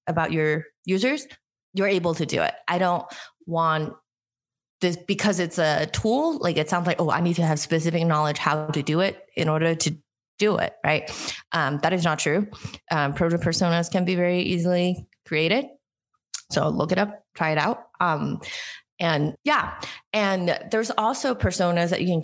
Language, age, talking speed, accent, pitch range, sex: English, 20-39, 180 wpm, American, 155-185 Hz, female